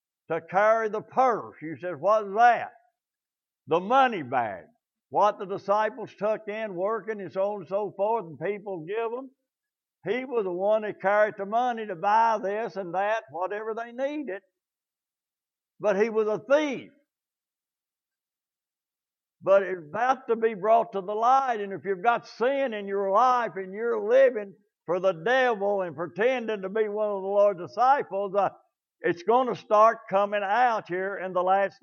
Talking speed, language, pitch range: 170 wpm, English, 195-245 Hz